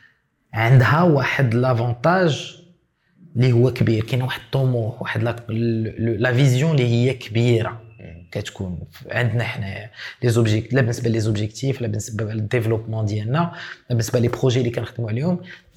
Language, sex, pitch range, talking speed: Arabic, male, 120-170 Hz, 120 wpm